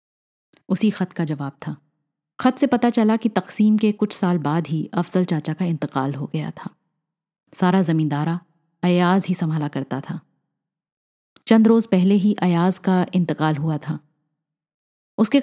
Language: Hindi